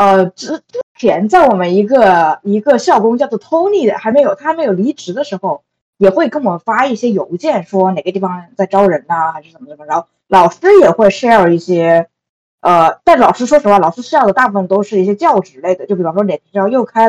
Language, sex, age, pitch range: Chinese, female, 20-39, 185-235 Hz